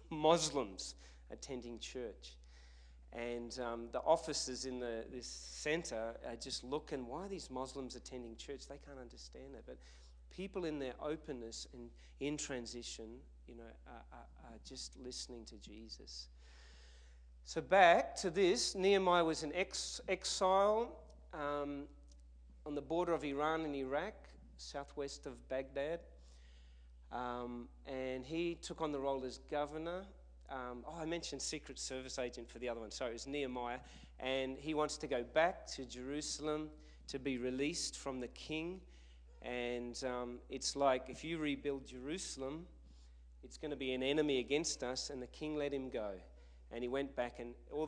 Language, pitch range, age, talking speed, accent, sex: English, 110-150 Hz, 40-59, 160 wpm, Australian, male